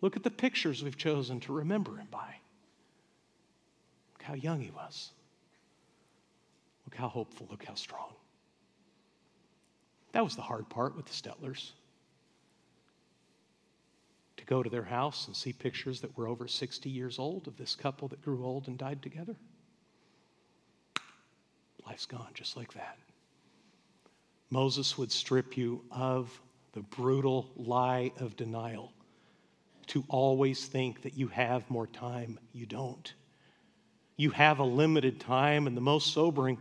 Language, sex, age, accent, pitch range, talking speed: English, male, 50-69, American, 130-195 Hz, 140 wpm